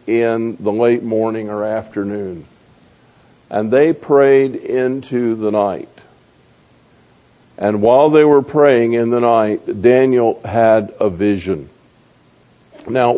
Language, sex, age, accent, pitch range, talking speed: English, male, 50-69, American, 105-130 Hz, 115 wpm